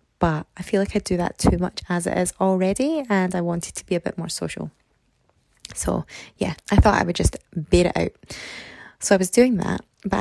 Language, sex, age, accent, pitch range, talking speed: English, female, 20-39, British, 155-195 Hz, 225 wpm